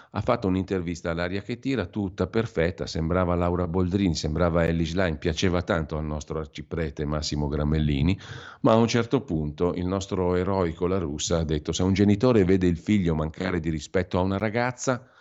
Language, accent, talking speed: Italian, native, 180 wpm